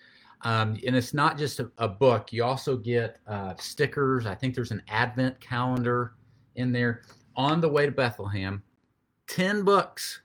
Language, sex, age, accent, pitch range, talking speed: English, male, 40-59, American, 110-135 Hz, 165 wpm